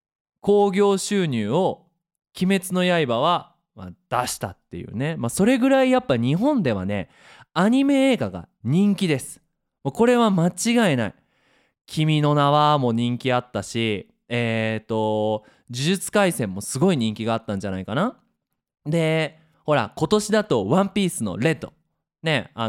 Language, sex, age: Japanese, male, 20-39